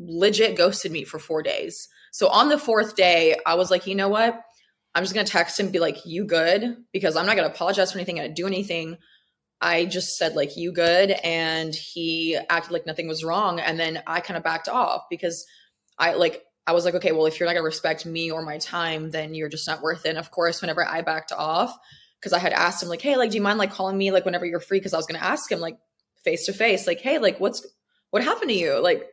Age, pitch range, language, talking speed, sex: 20-39, 170-220 Hz, English, 255 wpm, female